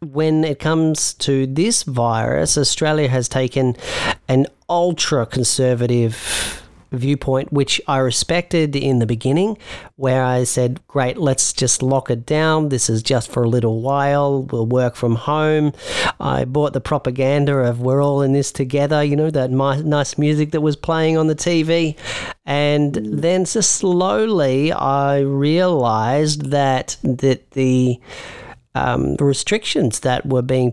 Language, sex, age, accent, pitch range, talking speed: English, male, 40-59, Australian, 130-150 Hz, 140 wpm